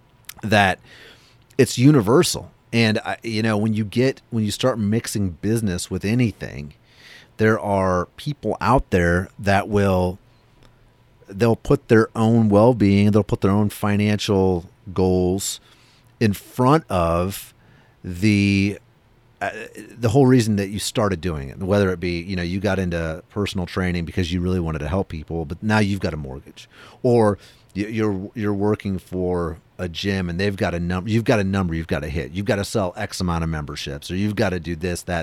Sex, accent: male, American